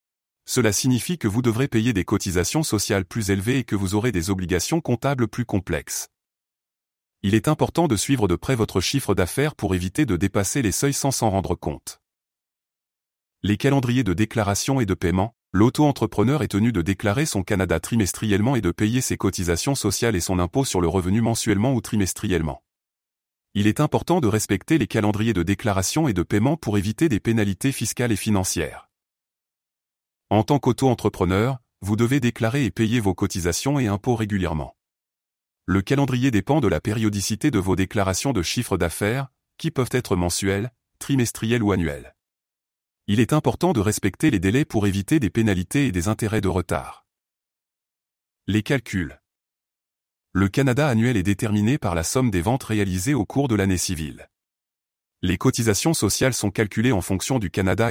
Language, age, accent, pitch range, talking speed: French, 30-49, French, 95-125 Hz, 170 wpm